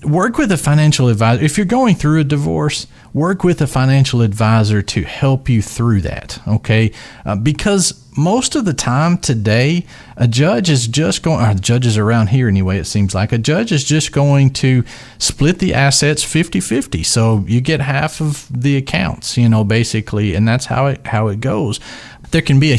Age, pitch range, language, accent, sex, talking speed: 40-59, 105-135 Hz, English, American, male, 185 wpm